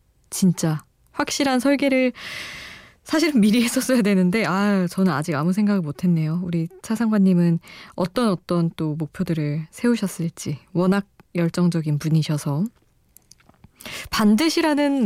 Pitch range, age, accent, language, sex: 170-220 Hz, 20-39, native, Korean, female